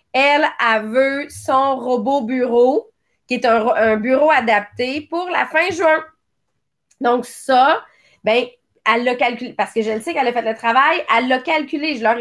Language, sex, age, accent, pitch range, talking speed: English, female, 30-49, Canadian, 240-300 Hz, 180 wpm